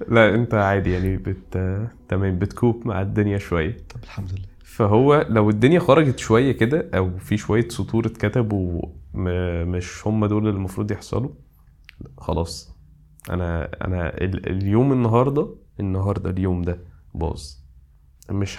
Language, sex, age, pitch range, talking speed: Arabic, male, 20-39, 90-110 Hz, 125 wpm